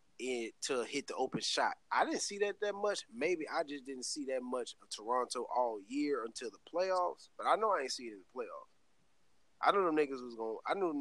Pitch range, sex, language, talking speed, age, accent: 115-155 Hz, male, English, 240 wpm, 20-39, American